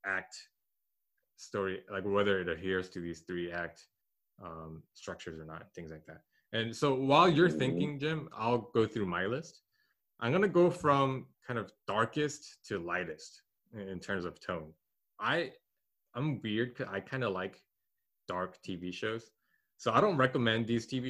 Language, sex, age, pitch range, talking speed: English, male, 20-39, 90-130 Hz, 165 wpm